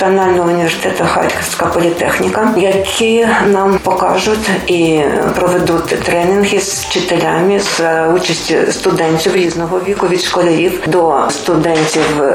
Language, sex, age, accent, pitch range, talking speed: Ukrainian, female, 40-59, native, 175-205 Hz, 95 wpm